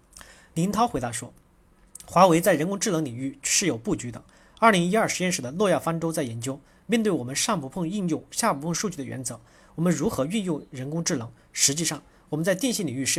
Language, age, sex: Chinese, 40-59, male